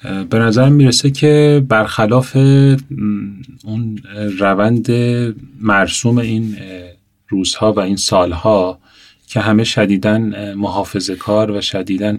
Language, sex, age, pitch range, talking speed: Persian, male, 30-49, 100-120 Hz, 100 wpm